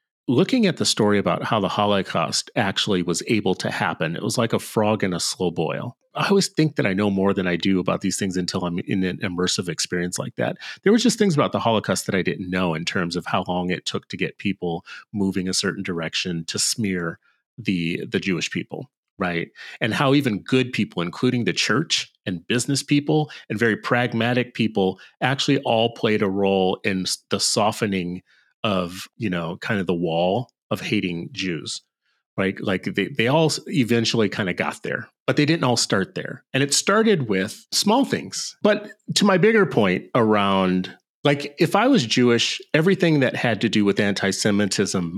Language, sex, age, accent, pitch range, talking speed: English, male, 30-49, American, 95-140 Hz, 195 wpm